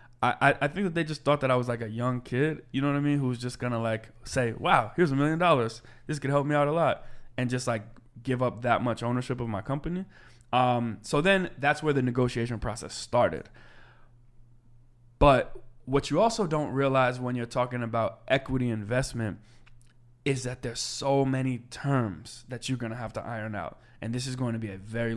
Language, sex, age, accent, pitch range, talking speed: English, male, 20-39, American, 115-135 Hz, 215 wpm